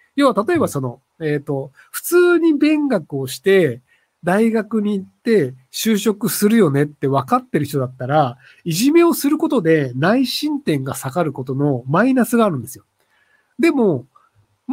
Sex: male